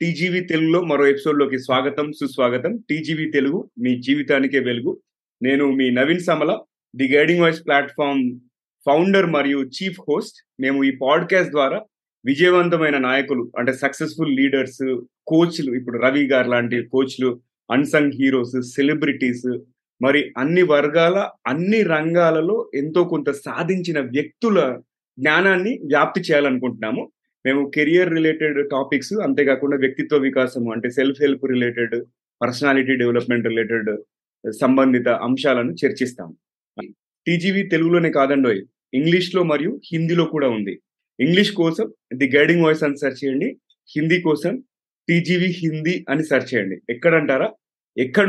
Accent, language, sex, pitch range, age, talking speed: native, Telugu, male, 130-165 Hz, 30-49, 120 wpm